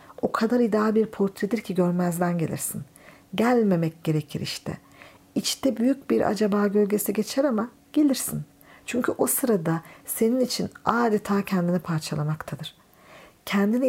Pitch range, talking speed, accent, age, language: 180-225 Hz, 120 wpm, native, 50-69, Turkish